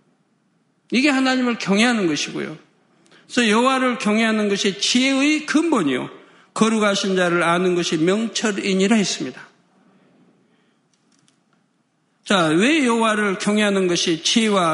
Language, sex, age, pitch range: Korean, male, 50-69, 190-240 Hz